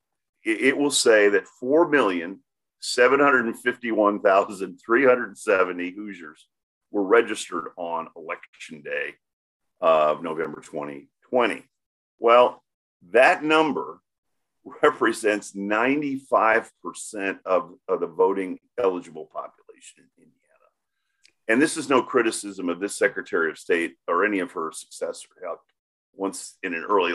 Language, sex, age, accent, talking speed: English, male, 50-69, American, 100 wpm